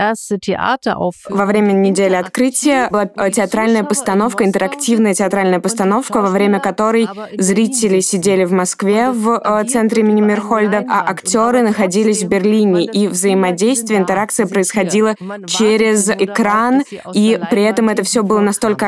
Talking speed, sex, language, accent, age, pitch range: 125 wpm, female, Russian, native, 20-39, 195-220 Hz